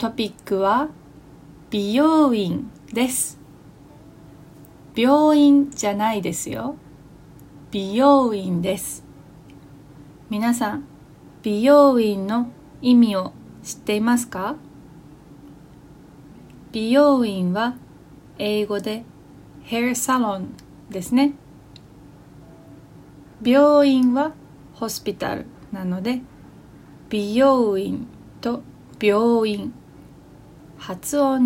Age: 20-39